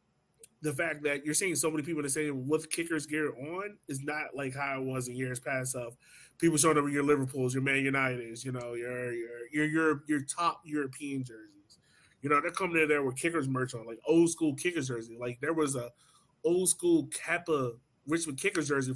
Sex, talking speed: male, 210 wpm